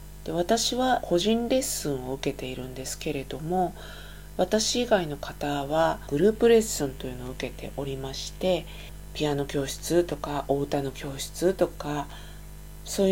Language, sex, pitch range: Japanese, female, 140-185 Hz